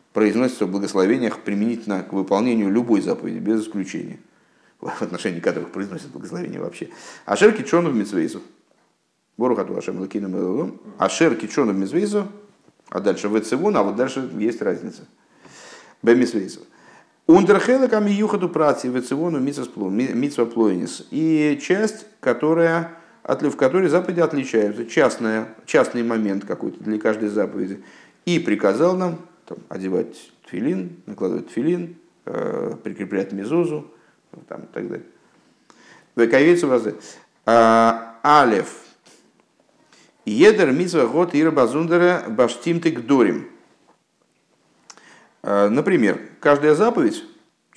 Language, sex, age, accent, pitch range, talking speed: Russian, male, 50-69, native, 110-170 Hz, 80 wpm